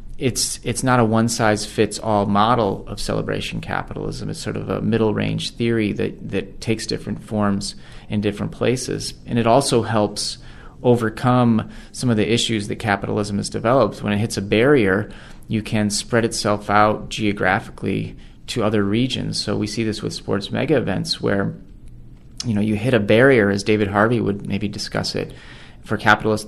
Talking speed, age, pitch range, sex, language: 170 wpm, 30-49, 100-110 Hz, male, English